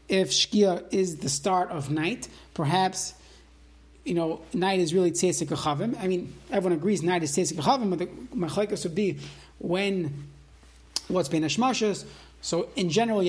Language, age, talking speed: English, 30-49, 160 wpm